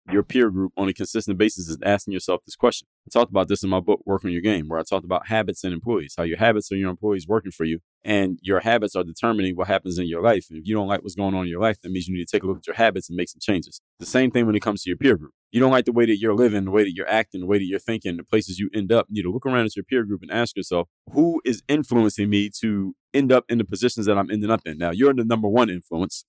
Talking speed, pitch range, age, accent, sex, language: 320 wpm, 95-120 Hz, 30-49, American, male, English